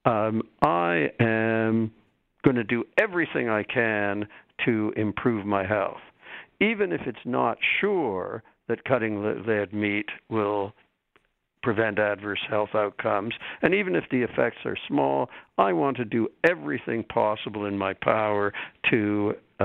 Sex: male